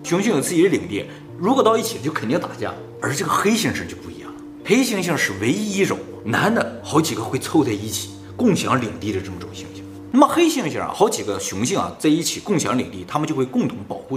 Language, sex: Chinese, male